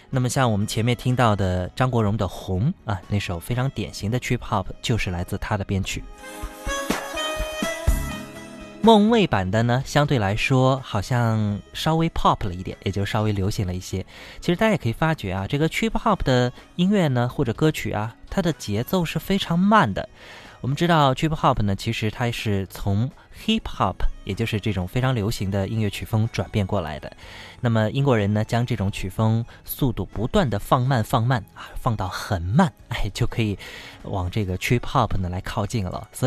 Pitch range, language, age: 100-130 Hz, Chinese, 20-39